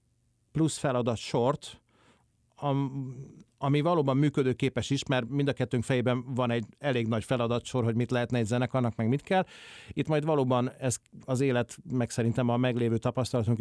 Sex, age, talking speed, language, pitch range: male, 40-59, 160 wpm, Hungarian, 120-135 Hz